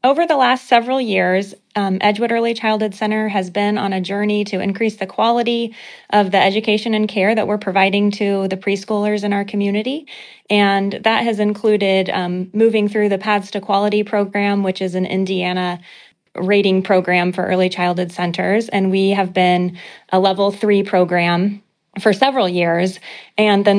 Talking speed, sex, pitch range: 170 wpm, female, 185-215 Hz